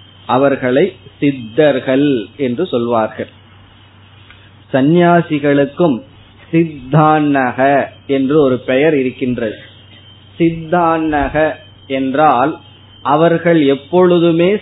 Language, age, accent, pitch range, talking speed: Tamil, 20-39, native, 115-150 Hz, 55 wpm